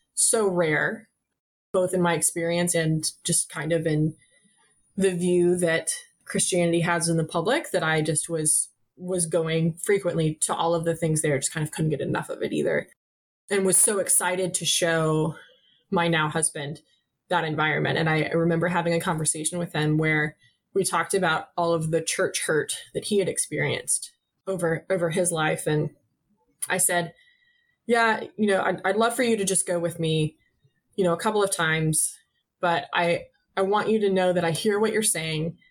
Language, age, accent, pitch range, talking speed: English, 20-39, American, 160-185 Hz, 185 wpm